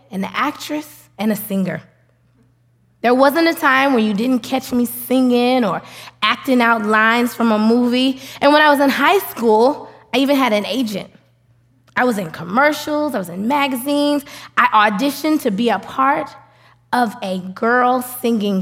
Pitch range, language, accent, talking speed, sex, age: 205-280 Hz, English, American, 170 wpm, female, 20-39